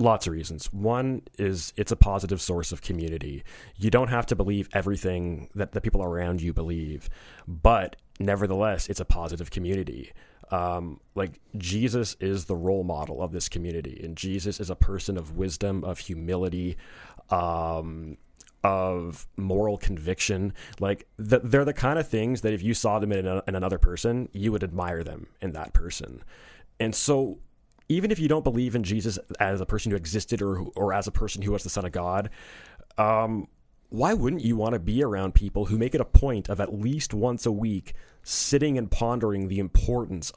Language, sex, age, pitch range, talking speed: English, male, 30-49, 90-110 Hz, 185 wpm